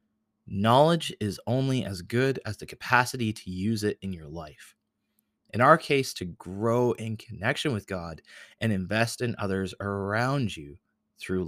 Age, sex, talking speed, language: 30-49, male, 155 wpm, English